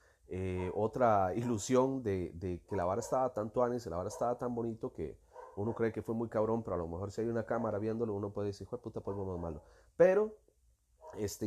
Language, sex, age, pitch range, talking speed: Spanish, male, 30-49, 95-125 Hz, 220 wpm